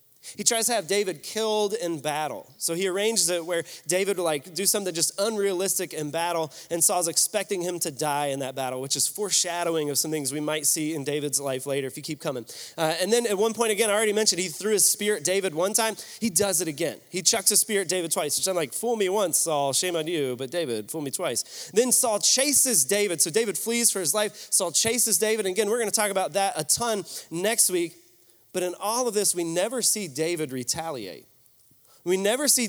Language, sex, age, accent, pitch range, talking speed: English, male, 30-49, American, 160-210 Hz, 235 wpm